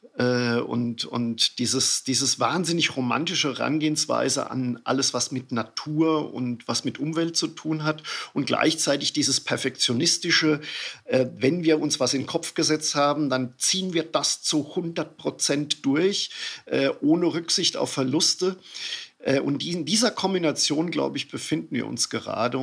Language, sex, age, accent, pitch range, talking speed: German, male, 50-69, German, 130-165 Hz, 140 wpm